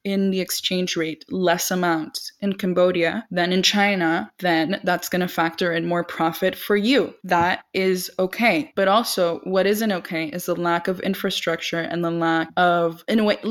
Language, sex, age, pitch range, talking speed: English, female, 20-39, 175-205 Hz, 180 wpm